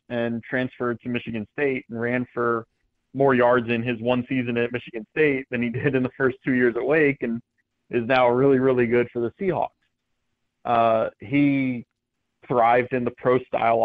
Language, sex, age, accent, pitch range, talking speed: English, male, 30-49, American, 115-130 Hz, 180 wpm